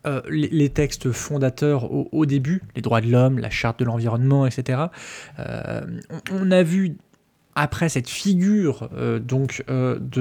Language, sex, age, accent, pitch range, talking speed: French, male, 20-39, French, 120-160 Hz, 165 wpm